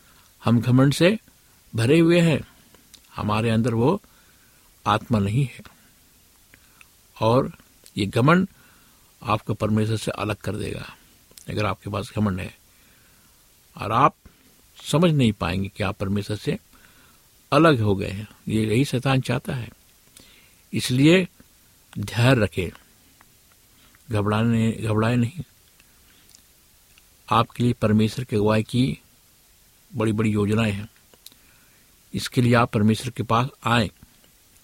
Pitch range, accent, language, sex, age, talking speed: 105-120 Hz, native, Hindi, male, 60-79, 115 wpm